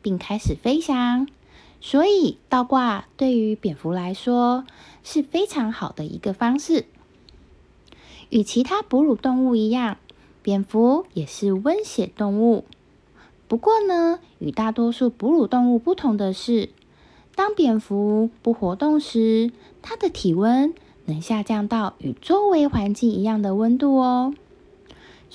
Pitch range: 200-270 Hz